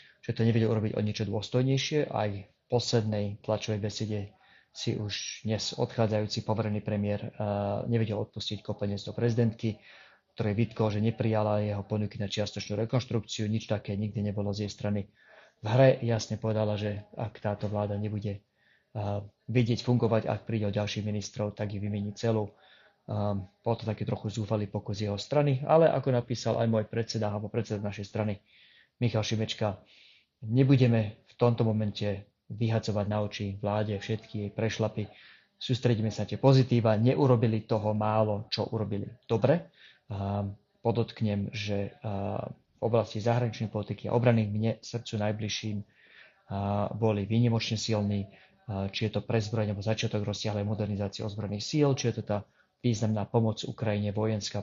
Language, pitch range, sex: Slovak, 105-115 Hz, male